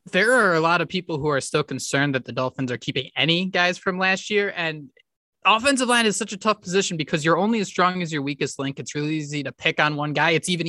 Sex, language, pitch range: male, English, 145-175 Hz